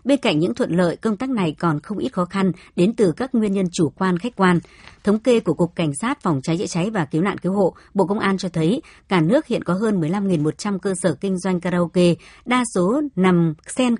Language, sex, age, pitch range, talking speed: Vietnamese, male, 60-79, 165-205 Hz, 245 wpm